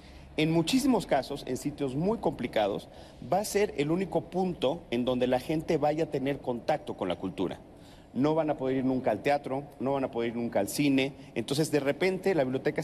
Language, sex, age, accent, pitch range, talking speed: Spanish, male, 40-59, Mexican, 125-165 Hz, 210 wpm